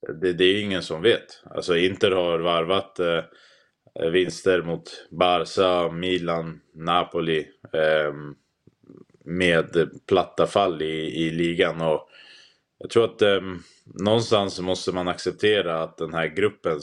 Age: 20-39